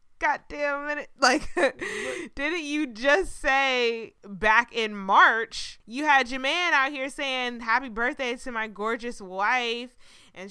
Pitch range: 180-250 Hz